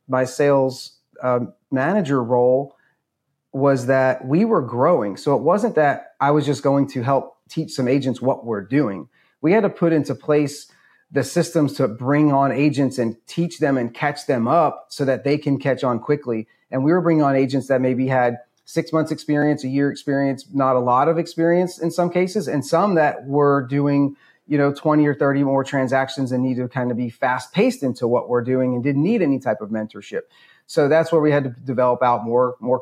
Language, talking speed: English, 210 wpm